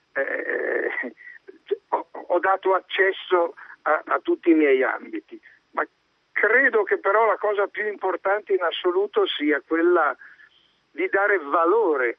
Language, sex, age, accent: Italian, male, 60-79, native